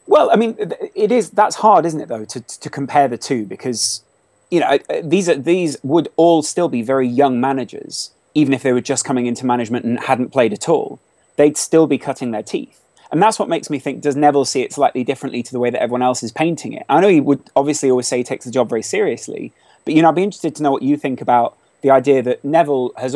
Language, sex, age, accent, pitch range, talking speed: English, male, 30-49, British, 130-175 Hz, 255 wpm